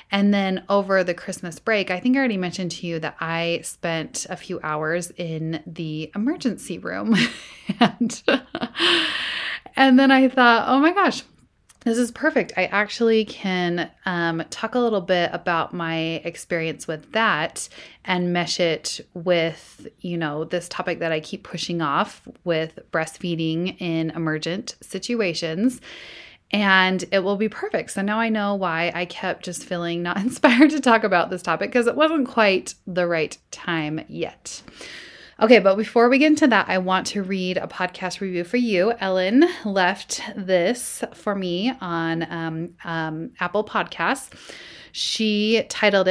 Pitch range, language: 175-225 Hz, English